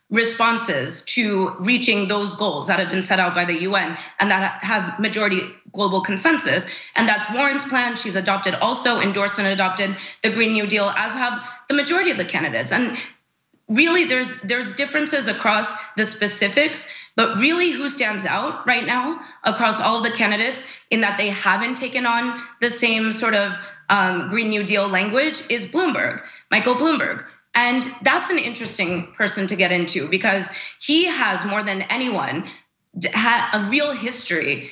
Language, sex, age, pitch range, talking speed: English, female, 20-39, 200-250 Hz, 165 wpm